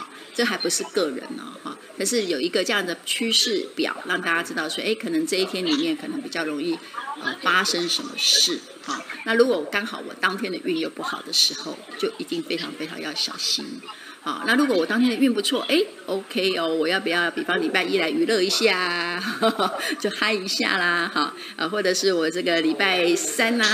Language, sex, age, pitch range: Chinese, female, 30-49, 190-305 Hz